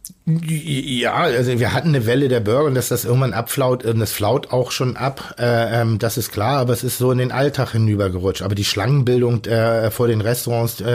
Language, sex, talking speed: German, male, 185 wpm